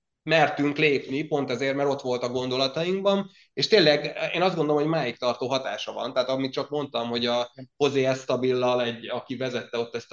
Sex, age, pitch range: male, 20-39, 120-140 Hz